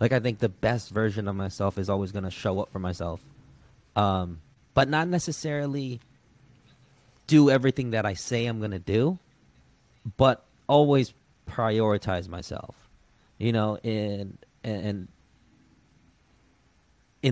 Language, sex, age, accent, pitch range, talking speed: English, male, 20-39, American, 100-130 Hz, 125 wpm